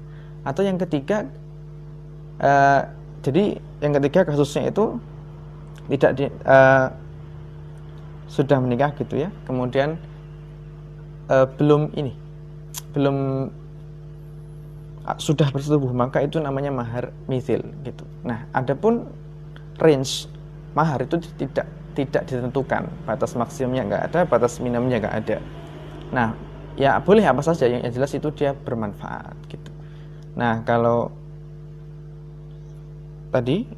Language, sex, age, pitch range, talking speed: Indonesian, male, 20-39, 130-155 Hz, 105 wpm